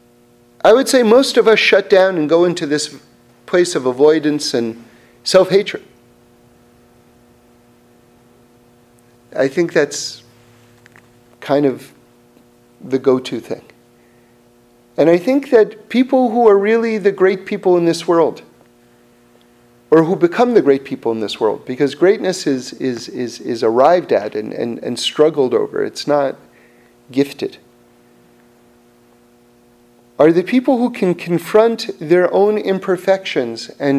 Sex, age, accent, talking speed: male, 50-69, American, 135 wpm